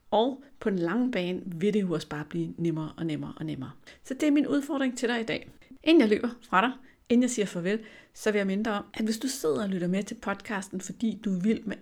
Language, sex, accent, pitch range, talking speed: Danish, female, native, 175-235 Hz, 270 wpm